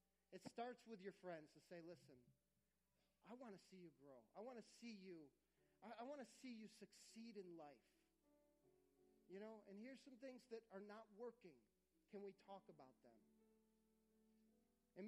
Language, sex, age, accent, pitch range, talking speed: English, male, 40-59, American, 170-220 Hz, 175 wpm